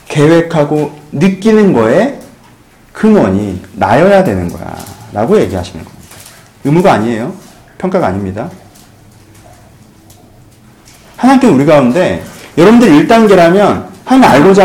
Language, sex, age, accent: Korean, male, 40-59, native